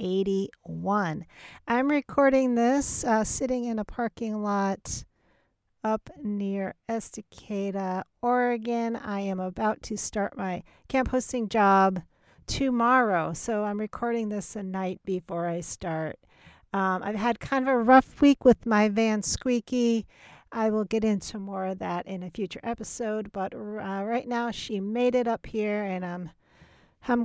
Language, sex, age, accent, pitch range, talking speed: English, female, 40-59, American, 185-225 Hz, 150 wpm